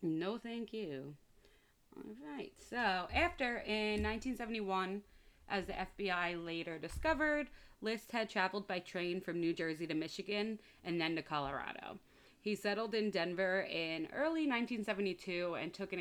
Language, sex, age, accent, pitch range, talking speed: English, female, 30-49, American, 165-210 Hz, 140 wpm